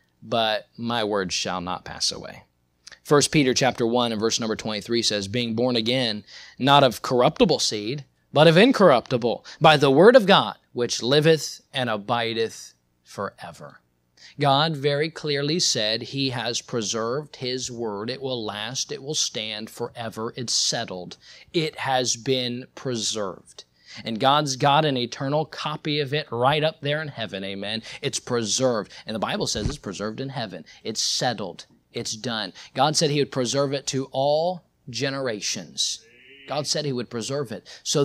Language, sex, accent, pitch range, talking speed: English, male, American, 115-150 Hz, 160 wpm